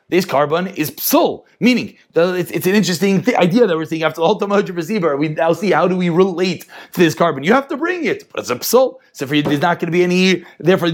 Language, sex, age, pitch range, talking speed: English, male, 30-49, 180-275 Hz, 265 wpm